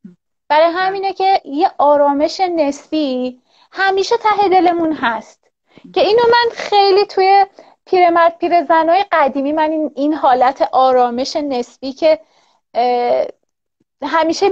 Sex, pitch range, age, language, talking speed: female, 260-350 Hz, 30-49, Persian, 110 wpm